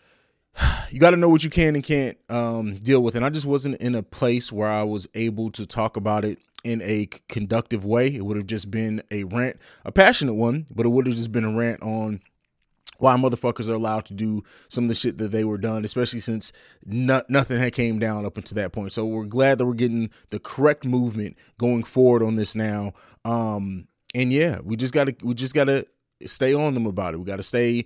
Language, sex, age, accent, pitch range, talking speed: English, male, 20-39, American, 110-125 Hz, 235 wpm